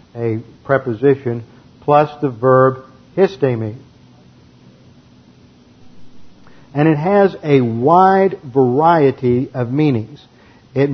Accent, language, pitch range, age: American, English, 125-155 Hz, 50-69